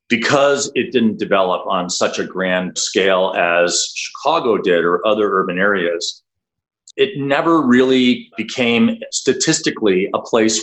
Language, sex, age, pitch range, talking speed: English, male, 40-59, 105-140 Hz, 130 wpm